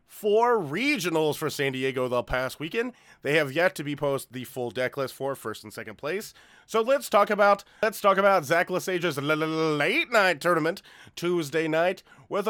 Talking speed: 185 wpm